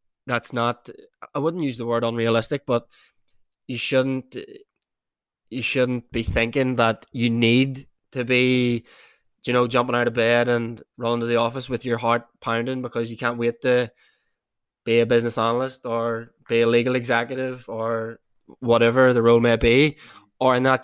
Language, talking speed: English, 165 wpm